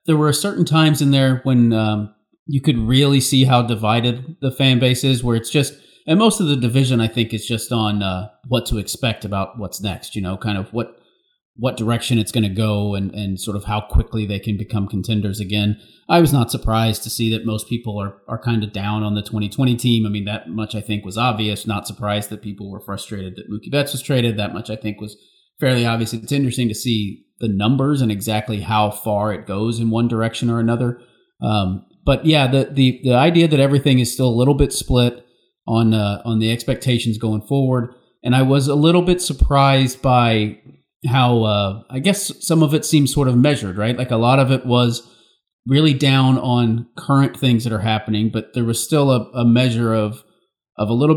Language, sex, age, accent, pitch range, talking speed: English, male, 30-49, American, 105-135 Hz, 220 wpm